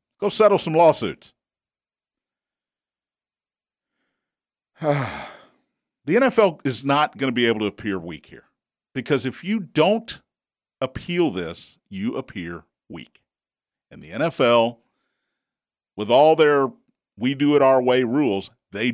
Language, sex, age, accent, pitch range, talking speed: English, male, 50-69, American, 120-170 Hz, 110 wpm